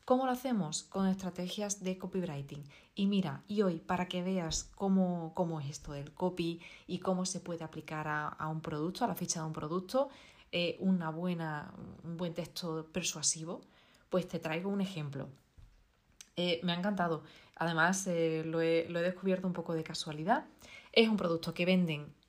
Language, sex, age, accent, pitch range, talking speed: Spanish, female, 20-39, Spanish, 160-185 Hz, 180 wpm